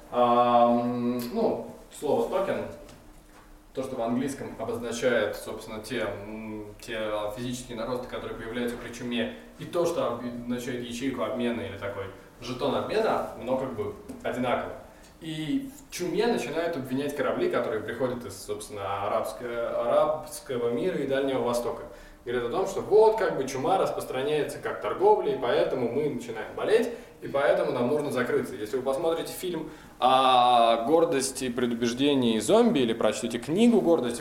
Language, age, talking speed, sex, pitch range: Russian, 20-39, 140 wpm, male, 120-170 Hz